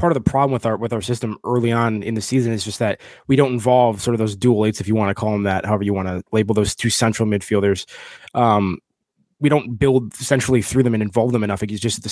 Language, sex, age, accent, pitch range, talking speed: English, male, 20-39, American, 110-140 Hz, 270 wpm